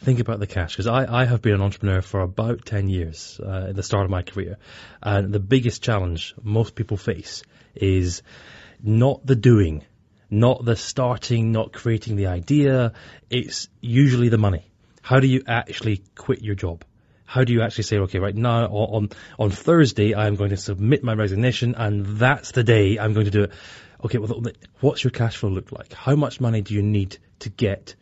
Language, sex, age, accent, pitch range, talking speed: Danish, male, 30-49, British, 100-125 Hz, 205 wpm